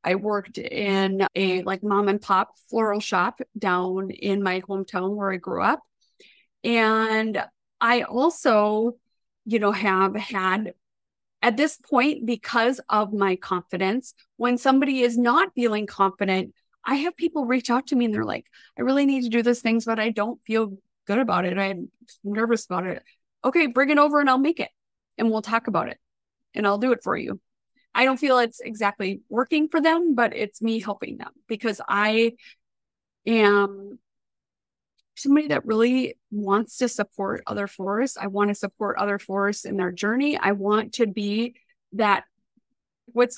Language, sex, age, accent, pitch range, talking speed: English, female, 30-49, American, 200-245 Hz, 170 wpm